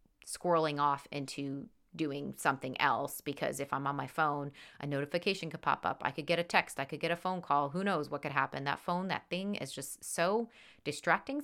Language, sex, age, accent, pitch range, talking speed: English, female, 30-49, American, 145-175 Hz, 215 wpm